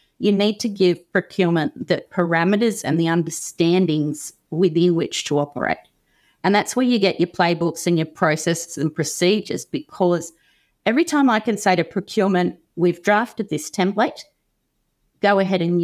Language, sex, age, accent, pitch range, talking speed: English, female, 40-59, Australian, 165-190 Hz, 155 wpm